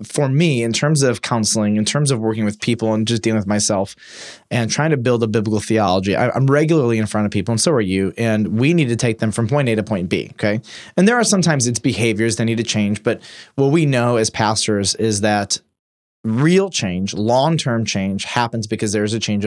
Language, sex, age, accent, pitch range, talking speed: English, male, 20-39, American, 110-130 Hz, 230 wpm